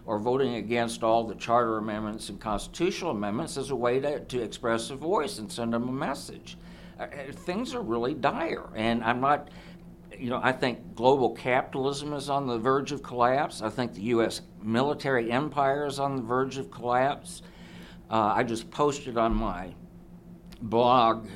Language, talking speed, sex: English, 175 wpm, male